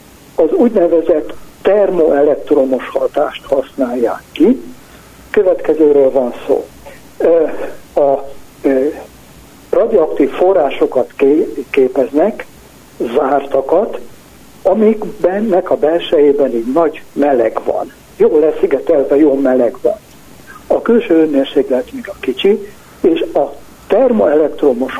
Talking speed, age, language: 90 wpm, 60-79, Hungarian